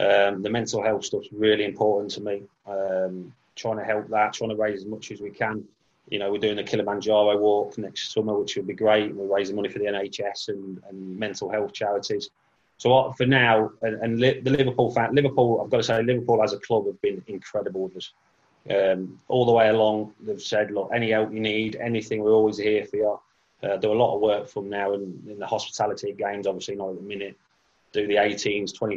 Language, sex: English, male